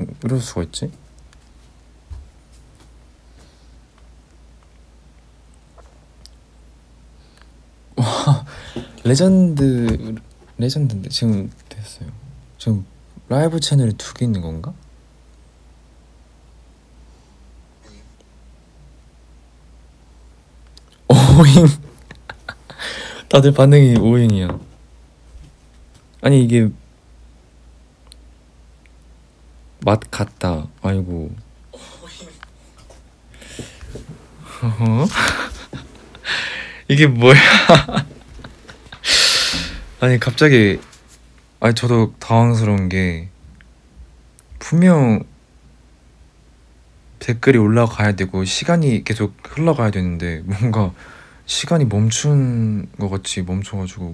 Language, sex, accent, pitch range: Korean, male, native, 70-115 Hz